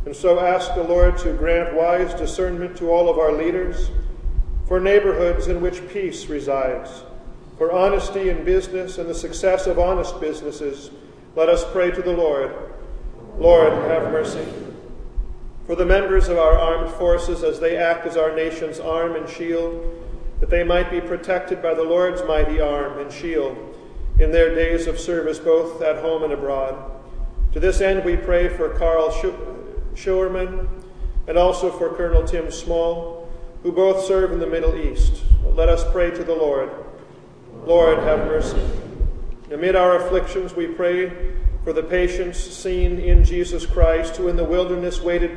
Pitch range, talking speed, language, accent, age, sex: 160-180 Hz, 165 wpm, English, American, 40-59, male